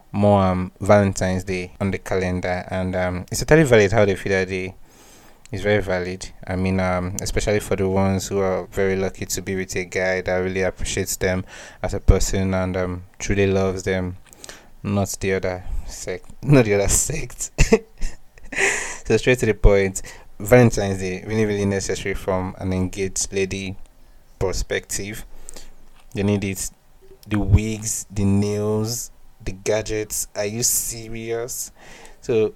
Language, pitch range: English, 90-105 Hz